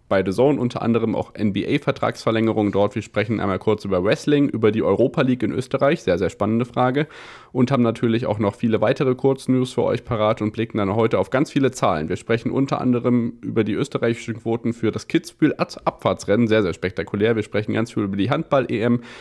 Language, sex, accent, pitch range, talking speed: German, male, German, 105-130 Hz, 200 wpm